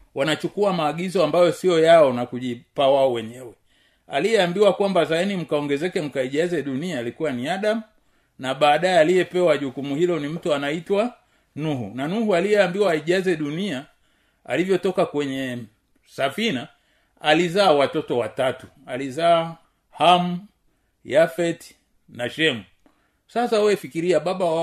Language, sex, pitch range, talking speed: Swahili, male, 135-185 Hz, 115 wpm